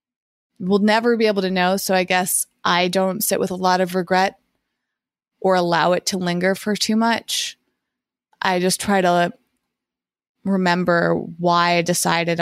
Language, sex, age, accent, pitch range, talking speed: English, female, 20-39, American, 180-215 Hz, 160 wpm